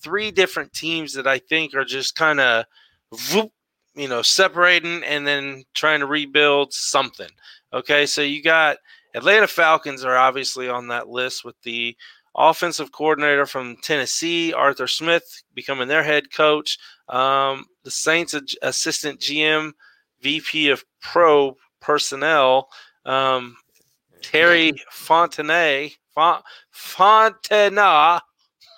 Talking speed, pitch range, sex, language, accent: 115 wpm, 135-165 Hz, male, English, American